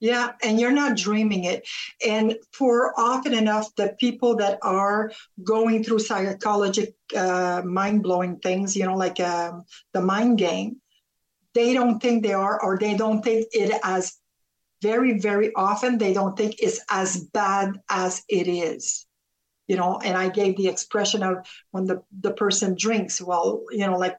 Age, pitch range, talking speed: 50-69, 190-230 Hz, 165 wpm